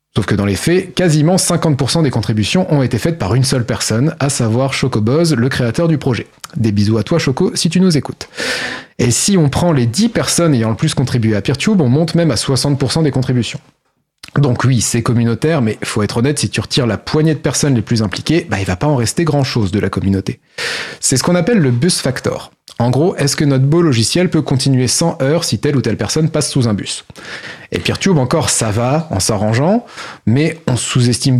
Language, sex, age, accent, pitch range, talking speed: French, male, 30-49, French, 120-160 Hz, 225 wpm